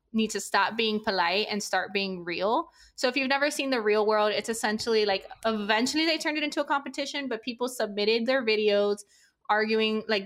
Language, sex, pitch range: English, female, 195-235 Hz